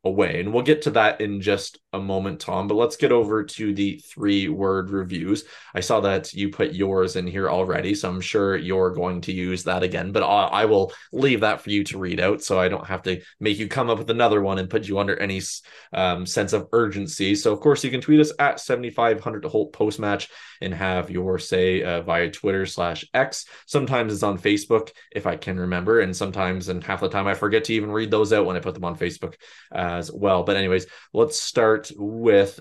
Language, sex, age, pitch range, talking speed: English, male, 20-39, 95-115 Hz, 230 wpm